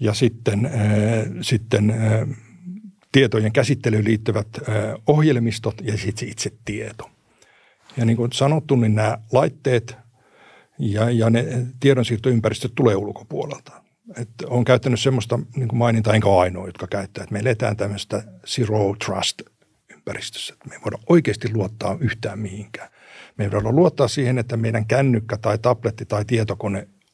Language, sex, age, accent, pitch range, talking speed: Finnish, male, 60-79, native, 105-125 Hz, 135 wpm